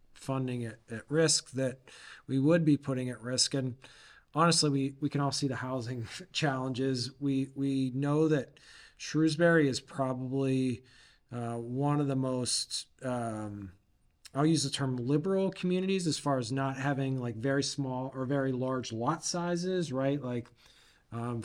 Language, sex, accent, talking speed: English, male, American, 155 wpm